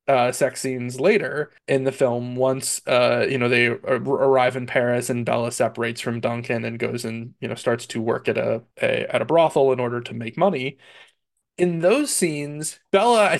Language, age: English, 20-39